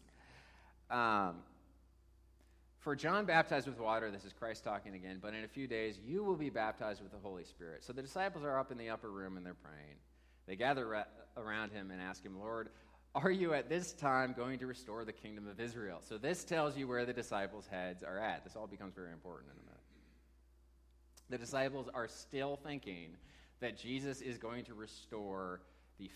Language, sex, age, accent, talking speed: English, male, 30-49, American, 195 wpm